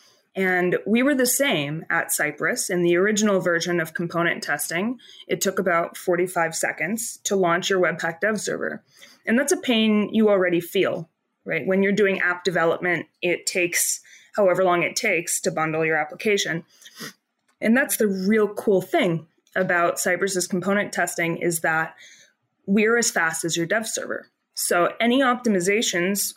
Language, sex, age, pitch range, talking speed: English, female, 20-39, 170-215 Hz, 160 wpm